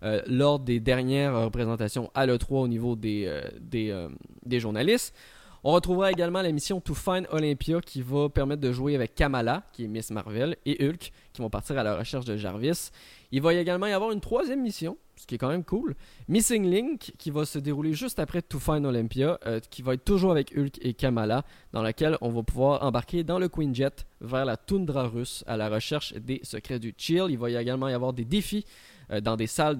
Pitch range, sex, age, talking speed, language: 120-170 Hz, male, 20-39, 225 wpm, French